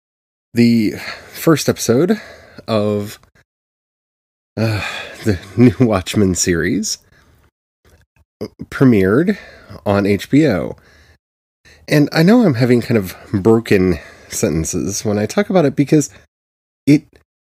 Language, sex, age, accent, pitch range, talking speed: English, male, 30-49, American, 90-125 Hz, 95 wpm